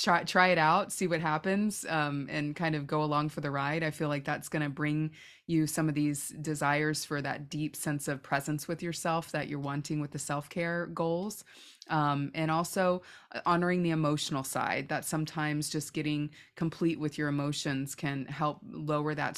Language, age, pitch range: English, 20-39, 145-170 Hz